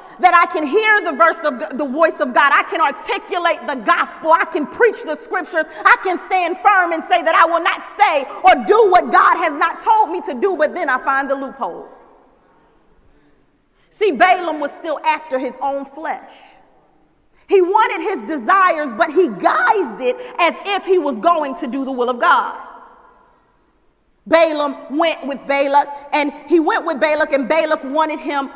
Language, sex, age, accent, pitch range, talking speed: English, female, 40-59, American, 295-380 Hz, 180 wpm